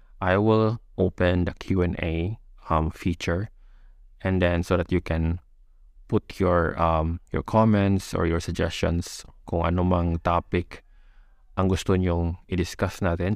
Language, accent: Filipino, native